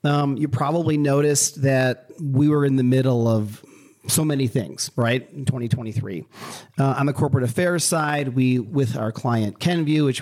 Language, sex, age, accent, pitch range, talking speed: English, male, 40-59, American, 115-145 Hz, 170 wpm